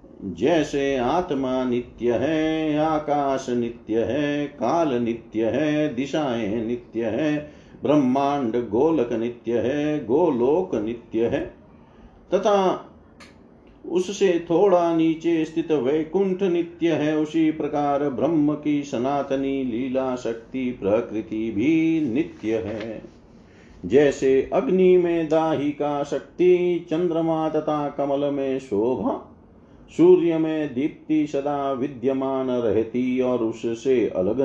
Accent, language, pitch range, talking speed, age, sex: native, Hindi, 125-160 Hz, 105 wpm, 50-69, male